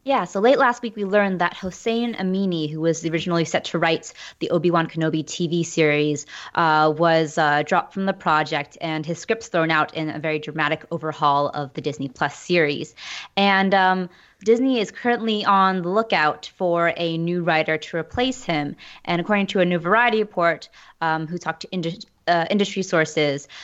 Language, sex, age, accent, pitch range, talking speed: English, female, 20-39, American, 160-195 Hz, 185 wpm